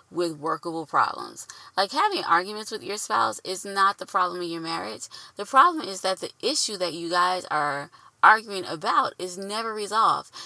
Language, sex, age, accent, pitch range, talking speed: English, female, 20-39, American, 170-215 Hz, 180 wpm